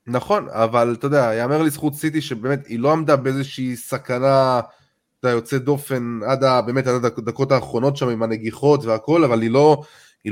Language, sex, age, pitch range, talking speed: Hebrew, male, 20-39, 130-170 Hz, 170 wpm